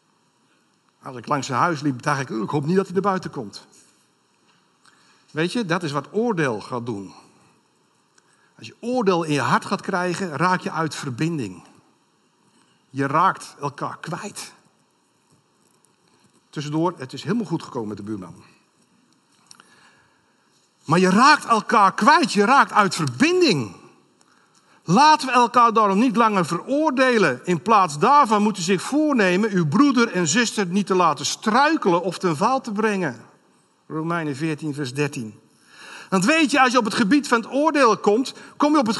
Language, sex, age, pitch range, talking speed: Dutch, male, 60-79, 165-245 Hz, 160 wpm